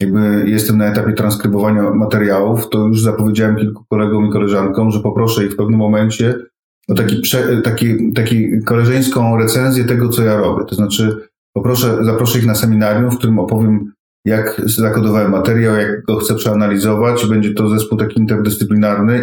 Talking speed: 160 wpm